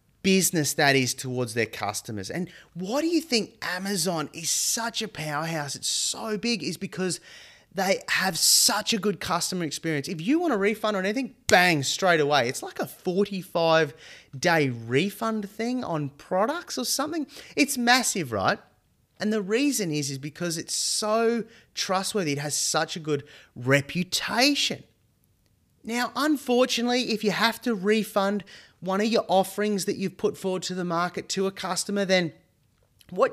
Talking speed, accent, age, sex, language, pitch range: 160 wpm, Australian, 30-49, male, English, 160-230 Hz